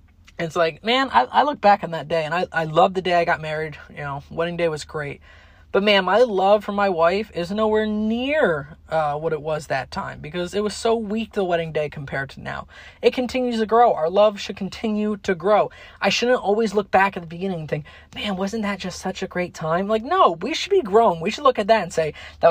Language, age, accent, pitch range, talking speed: English, 20-39, American, 160-215 Hz, 250 wpm